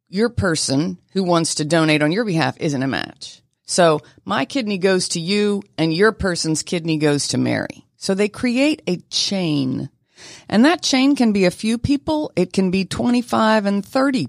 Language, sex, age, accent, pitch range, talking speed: English, female, 50-69, American, 150-205 Hz, 185 wpm